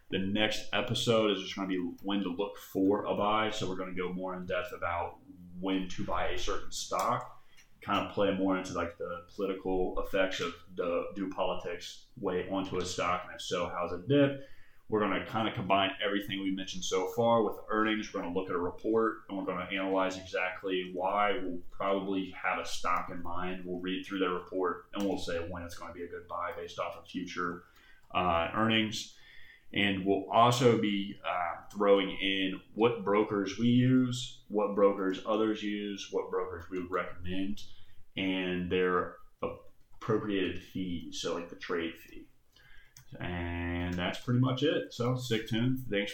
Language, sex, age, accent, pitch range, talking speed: English, male, 30-49, American, 90-110 Hz, 180 wpm